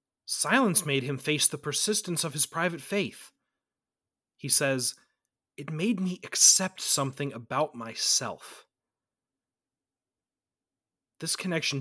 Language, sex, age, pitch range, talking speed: English, male, 30-49, 125-165 Hz, 105 wpm